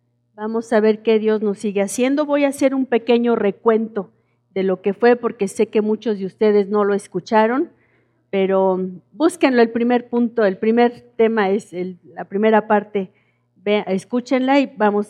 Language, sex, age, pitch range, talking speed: Spanish, female, 50-69, 180-235 Hz, 165 wpm